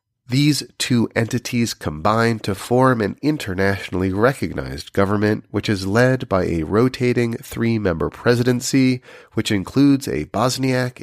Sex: male